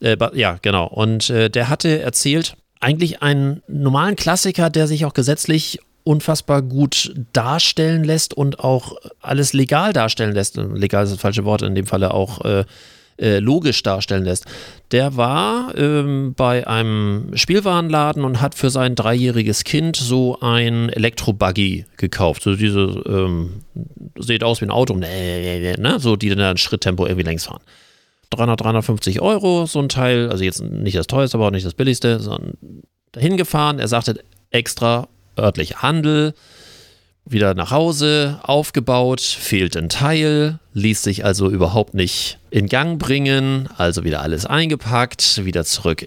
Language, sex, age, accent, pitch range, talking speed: German, male, 40-59, German, 100-140 Hz, 150 wpm